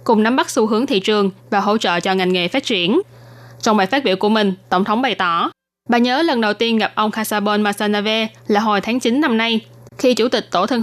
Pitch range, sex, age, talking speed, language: 195-230 Hz, female, 10-29, 250 wpm, Vietnamese